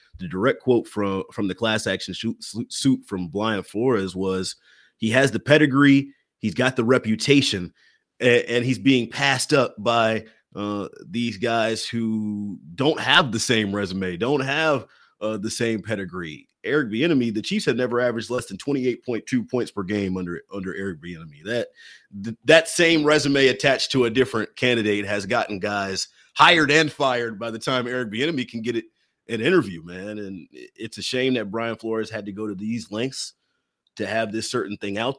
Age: 30-49